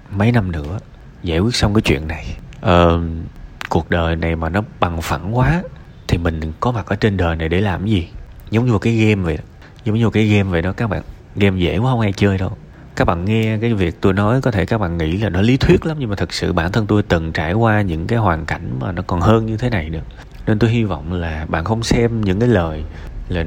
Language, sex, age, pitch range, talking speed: Vietnamese, male, 20-39, 85-120 Hz, 265 wpm